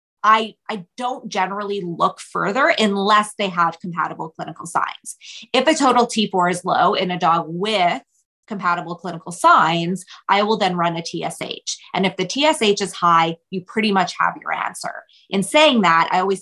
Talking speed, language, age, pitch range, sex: 175 wpm, English, 20-39, 170-215 Hz, female